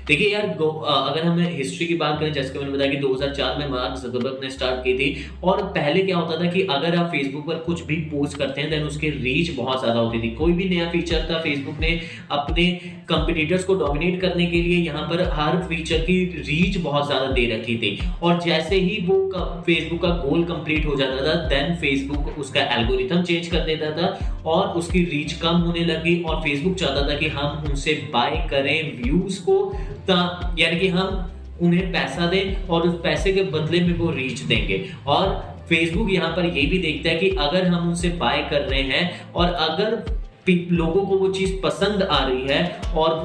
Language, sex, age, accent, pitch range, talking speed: Hindi, male, 10-29, native, 140-175 Hz, 205 wpm